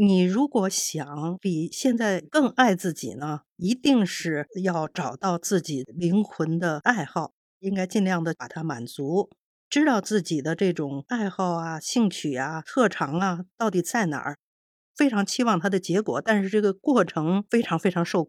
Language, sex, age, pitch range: Chinese, female, 50-69, 165-230 Hz